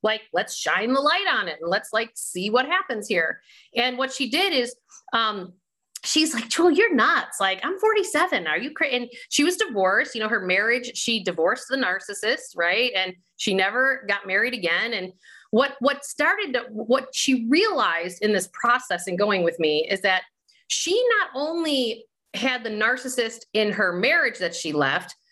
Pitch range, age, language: 195-275 Hz, 30-49, English